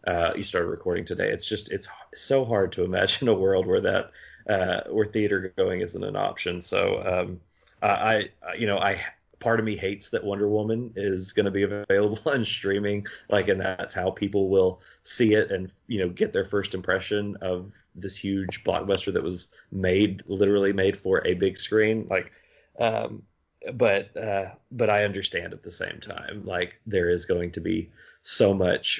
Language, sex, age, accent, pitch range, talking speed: English, male, 30-49, American, 95-110 Hz, 190 wpm